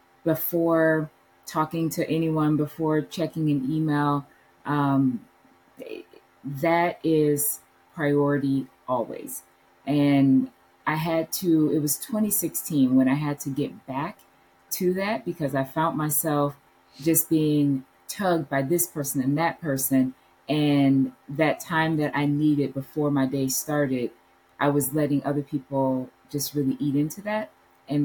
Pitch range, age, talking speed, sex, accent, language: 140-165 Hz, 20-39, 135 wpm, female, American, English